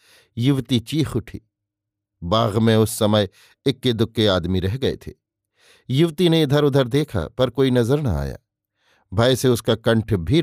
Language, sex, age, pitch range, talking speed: Hindi, male, 50-69, 105-125 Hz, 155 wpm